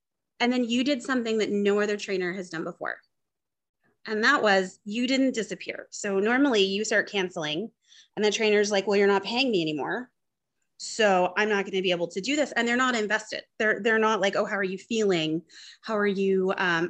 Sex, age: female, 30-49